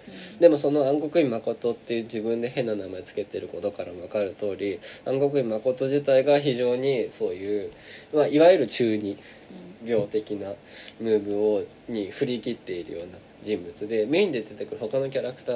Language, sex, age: Japanese, male, 20-39